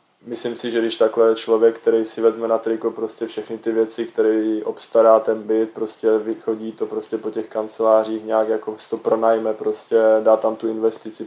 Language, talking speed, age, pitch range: Czech, 185 wpm, 20-39, 110-115 Hz